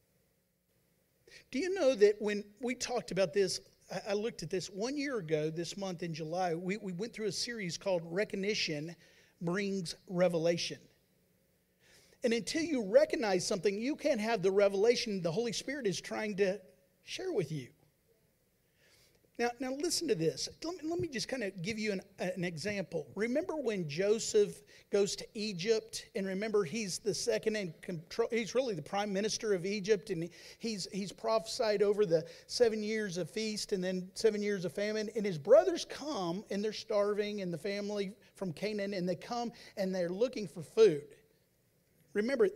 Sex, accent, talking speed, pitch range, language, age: male, American, 170 wpm, 185-230 Hz, English, 50-69